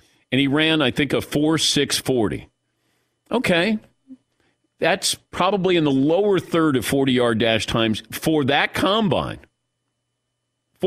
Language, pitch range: English, 130-180 Hz